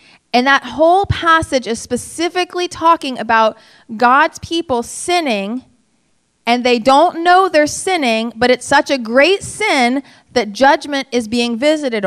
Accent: American